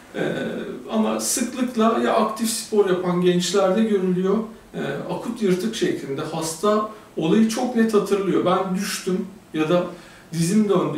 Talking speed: 130 wpm